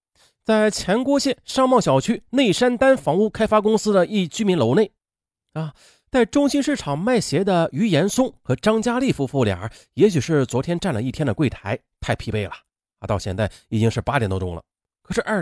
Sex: male